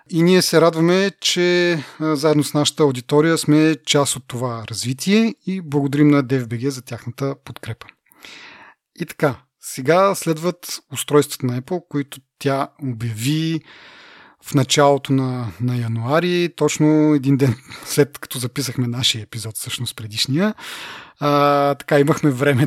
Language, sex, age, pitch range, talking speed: Bulgarian, male, 30-49, 125-155 Hz, 130 wpm